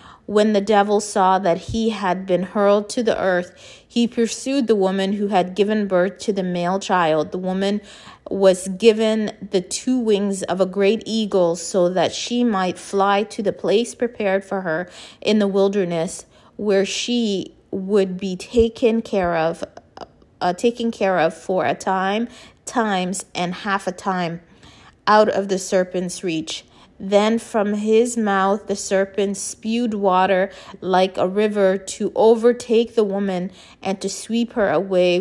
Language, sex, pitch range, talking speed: English, female, 180-215 Hz, 160 wpm